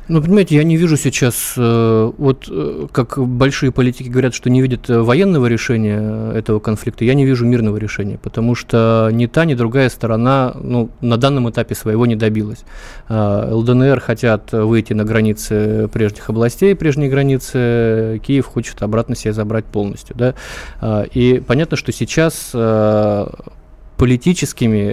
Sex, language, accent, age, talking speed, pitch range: male, Russian, native, 20-39, 140 wpm, 110-125 Hz